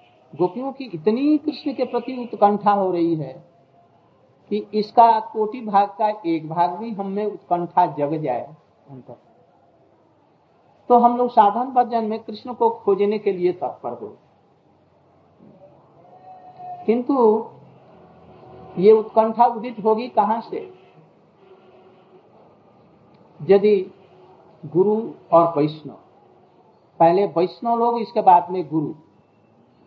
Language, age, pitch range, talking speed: Hindi, 60-79, 170-235 Hz, 110 wpm